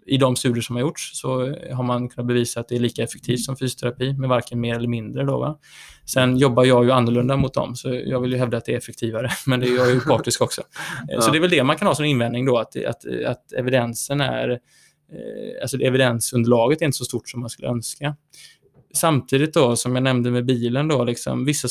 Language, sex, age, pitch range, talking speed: Swedish, male, 20-39, 120-135 Hz, 230 wpm